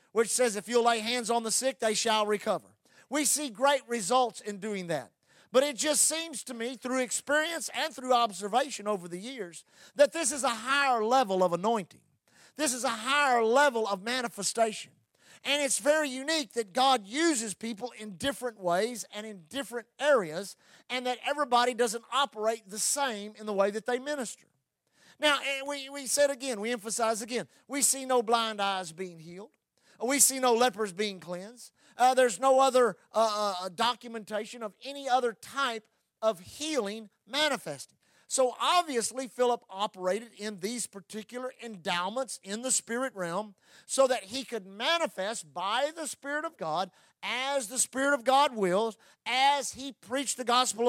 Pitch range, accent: 215-270 Hz, American